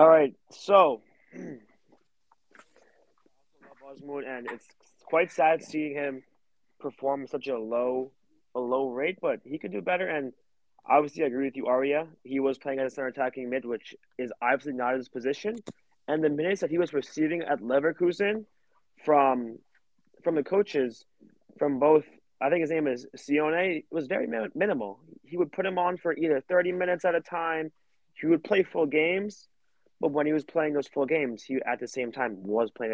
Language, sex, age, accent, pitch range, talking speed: English, male, 20-39, American, 130-175 Hz, 180 wpm